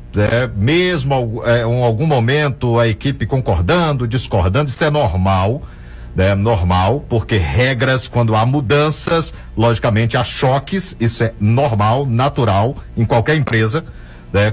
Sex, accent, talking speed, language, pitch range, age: male, Brazilian, 130 wpm, Portuguese, 110-160 Hz, 50-69